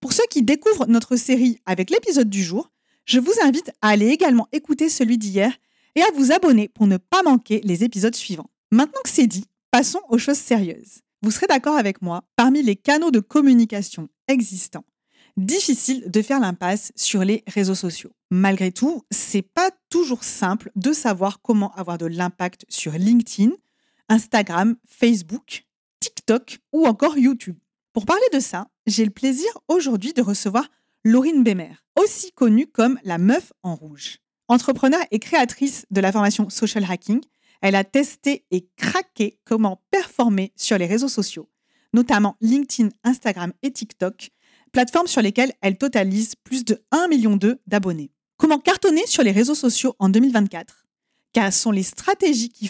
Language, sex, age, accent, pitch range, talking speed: French, female, 40-59, French, 200-275 Hz, 165 wpm